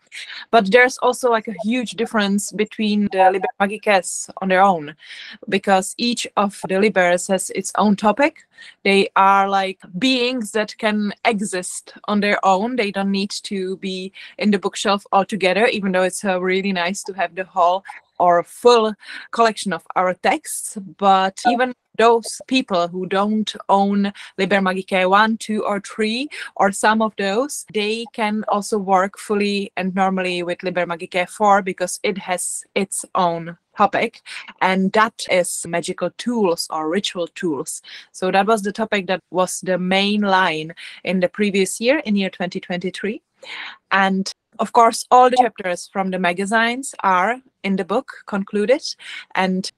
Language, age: Czech, 20-39